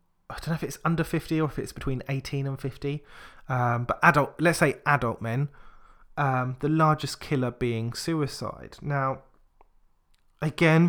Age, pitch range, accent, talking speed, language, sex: 20-39, 130-165 Hz, British, 160 wpm, English, male